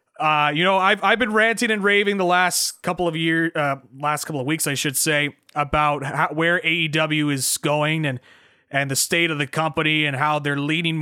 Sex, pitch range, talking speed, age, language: male, 145-175 Hz, 210 wpm, 30-49, English